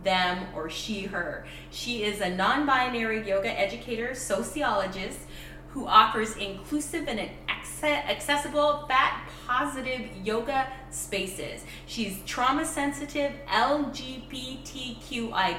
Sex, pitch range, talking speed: female, 195-275 Hz, 90 wpm